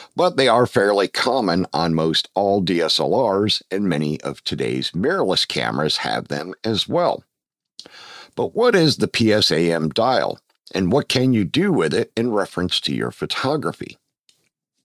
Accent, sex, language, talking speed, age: American, male, English, 150 wpm, 50-69